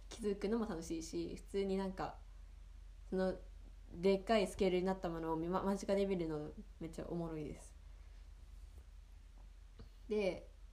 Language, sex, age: Japanese, female, 20-39